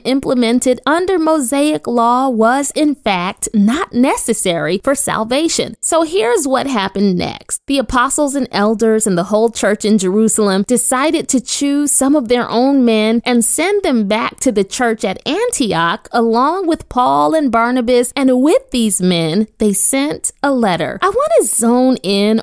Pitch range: 220-300 Hz